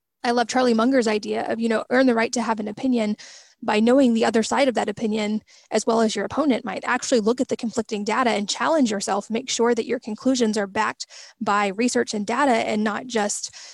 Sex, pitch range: female, 215-240 Hz